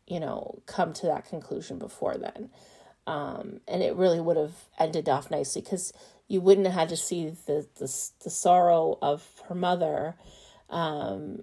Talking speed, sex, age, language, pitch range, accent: 170 wpm, female, 30-49, English, 160-185 Hz, American